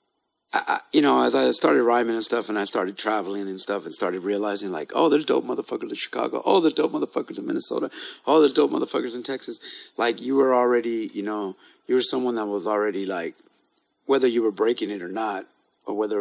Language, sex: English, male